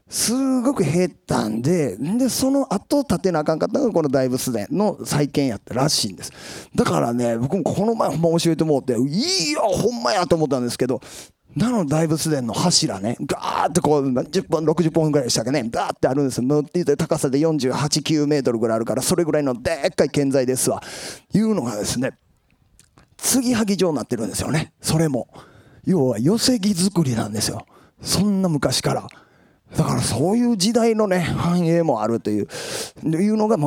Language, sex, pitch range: Japanese, male, 125-170 Hz